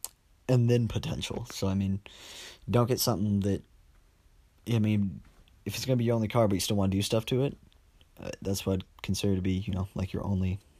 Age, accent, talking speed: 20-39, American, 230 wpm